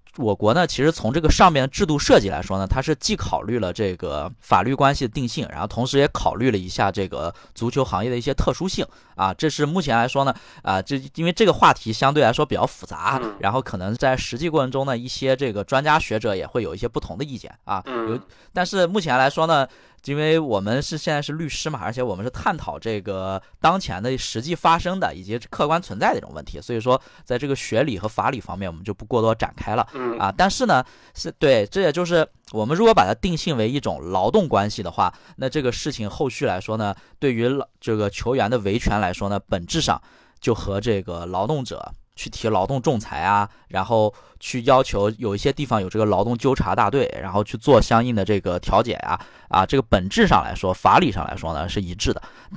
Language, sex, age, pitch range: Chinese, male, 20-39, 100-140 Hz